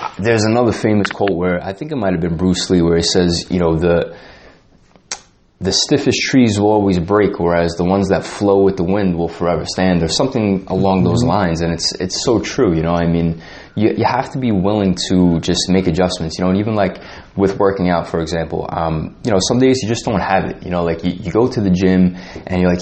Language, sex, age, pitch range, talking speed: English, male, 20-39, 90-105 Hz, 240 wpm